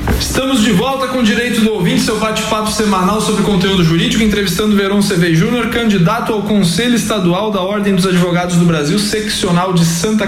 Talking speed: 180 wpm